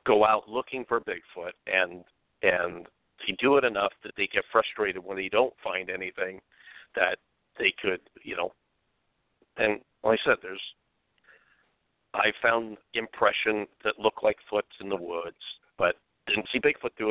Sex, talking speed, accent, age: male, 160 wpm, American, 50-69